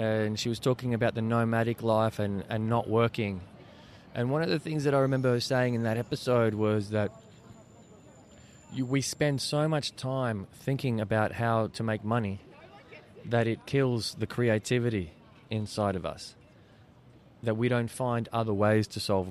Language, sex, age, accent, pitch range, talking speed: English, male, 20-39, Australian, 105-120 Hz, 170 wpm